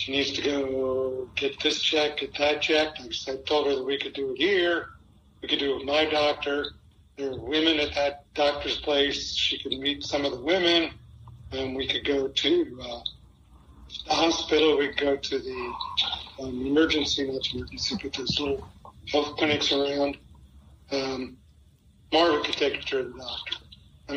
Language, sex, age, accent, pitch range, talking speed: English, male, 40-59, American, 105-150 Hz, 175 wpm